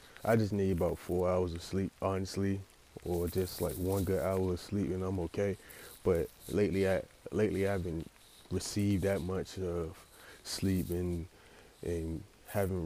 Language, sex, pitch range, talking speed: English, male, 90-95 Hz, 160 wpm